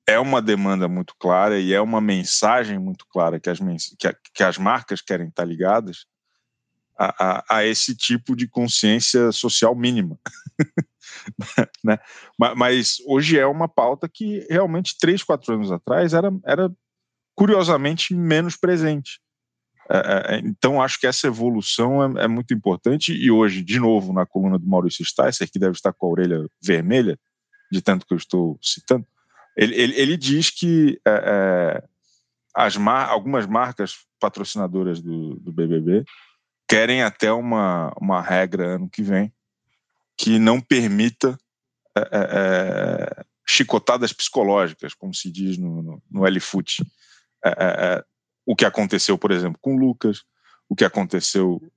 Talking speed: 155 wpm